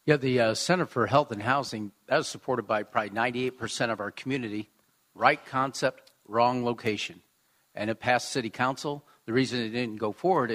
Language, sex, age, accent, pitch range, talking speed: English, male, 50-69, American, 115-145 Hz, 180 wpm